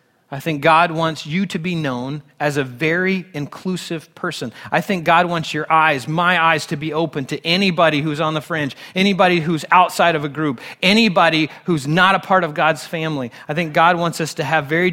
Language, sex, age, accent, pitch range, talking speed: English, male, 30-49, American, 140-175 Hz, 210 wpm